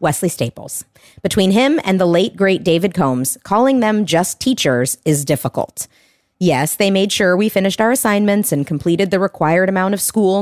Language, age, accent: English, 30-49, American